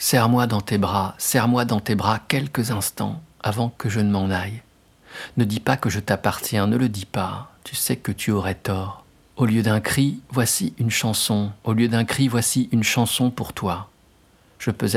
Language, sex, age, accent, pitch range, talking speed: French, male, 50-69, French, 100-120 Hz, 200 wpm